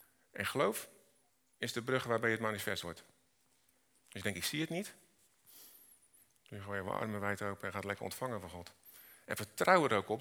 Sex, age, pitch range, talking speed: male, 40-59, 100-120 Hz, 210 wpm